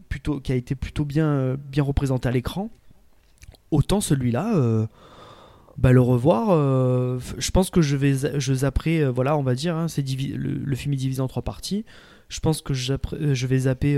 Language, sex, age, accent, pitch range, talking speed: French, male, 20-39, French, 125-155 Hz, 200 wpm